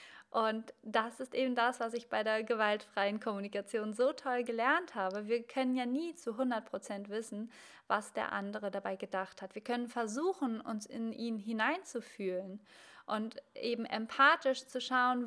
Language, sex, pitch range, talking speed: German, female, 215-260 Hz, 160 wpm